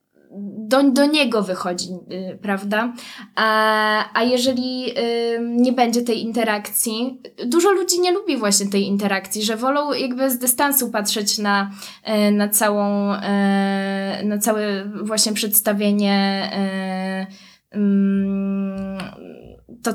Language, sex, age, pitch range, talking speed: Polish, female, 20-39, 210-240 Hz, 100 wpm